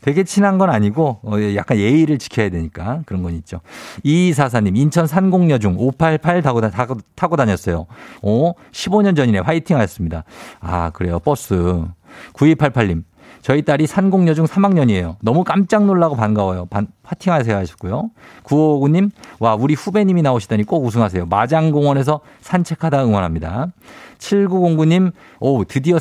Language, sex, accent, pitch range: Korean, male, native, 110-175 Hz